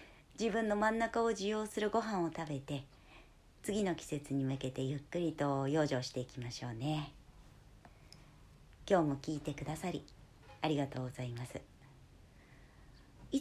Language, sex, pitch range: Japanese, male, 130-190 Hz